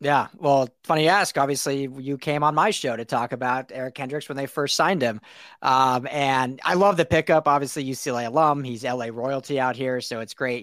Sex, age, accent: male, 30-49, American